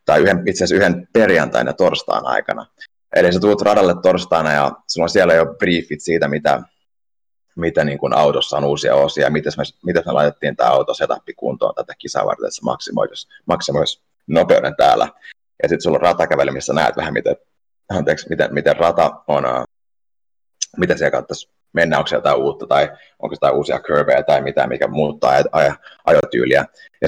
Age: 30-49